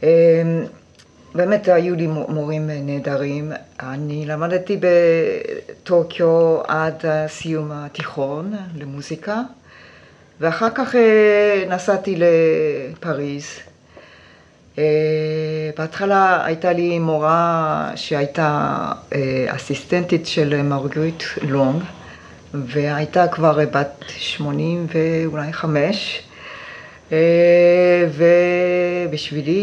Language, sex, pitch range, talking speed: Hebrew, female, 150-180 Hz, 65 wpm